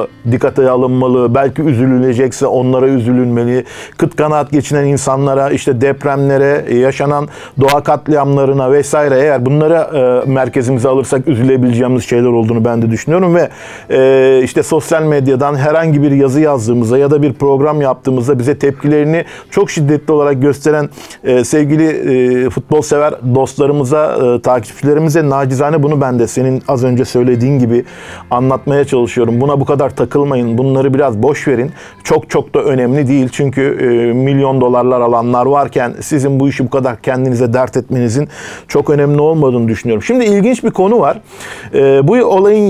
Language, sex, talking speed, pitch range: Turkish, male, 150 wpm, 130-150 Hz